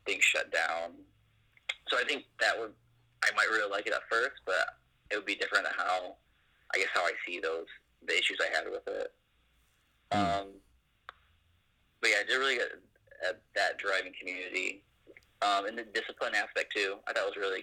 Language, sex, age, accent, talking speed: English, male, 30-49, American, 185 wpm